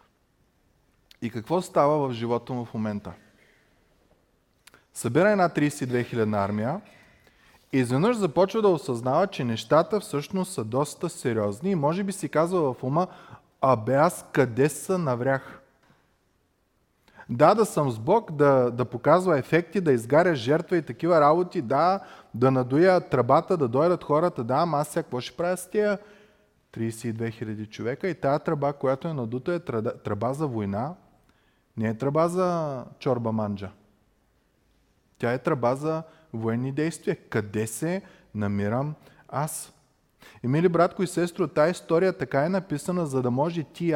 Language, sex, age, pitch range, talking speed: Bulgarian, male, 20-39, 120-170 Hz, 150 wpm